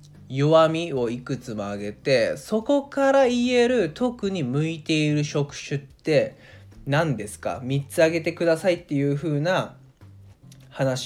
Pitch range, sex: 115-160 Hz, male